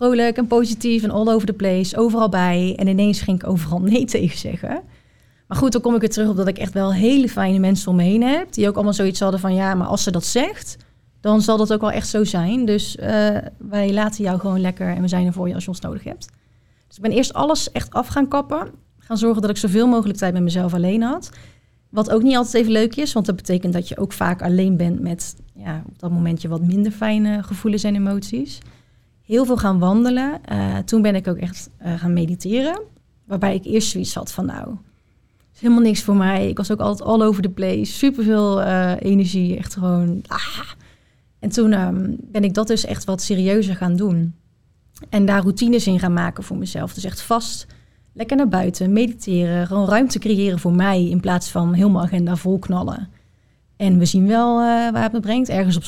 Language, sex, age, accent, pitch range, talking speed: Dutch, female, 30-49, Dutch, 180-220 Hz, 225 wpm